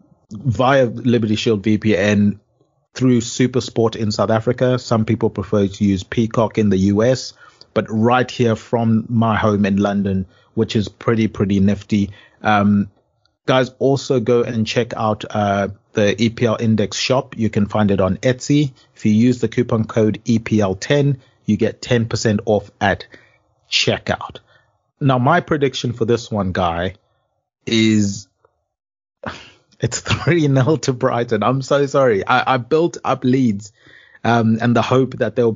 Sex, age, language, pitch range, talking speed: male, 30-49, English, 105-125 Hz, 150 wpm